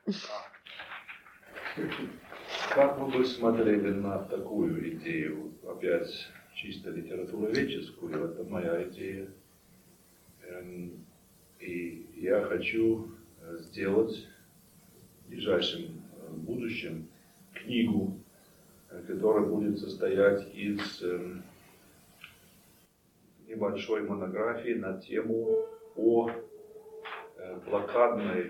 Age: 40-59